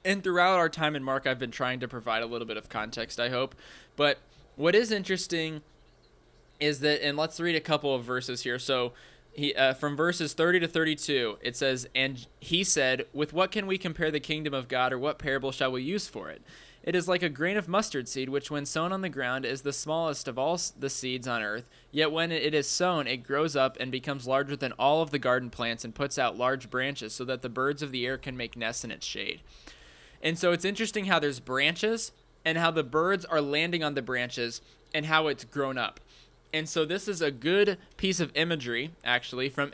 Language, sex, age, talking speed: English, male, 20-39, 230 wpm